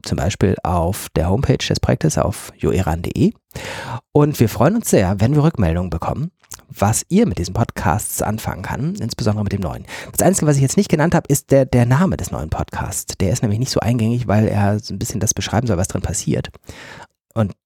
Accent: German